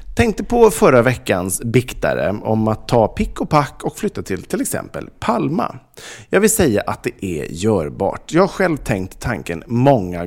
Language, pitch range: Swedish, 100-165 Hz